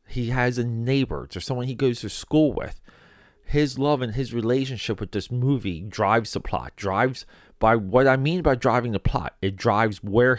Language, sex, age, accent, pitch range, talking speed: English, male, 30-49, American, 105-135 Hz, 195 wpm